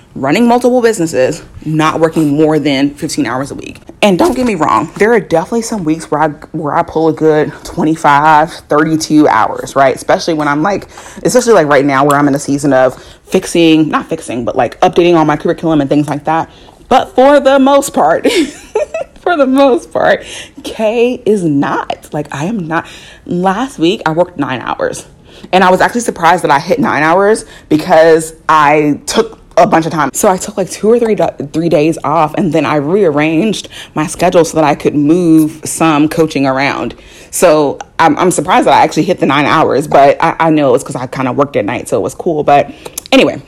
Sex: female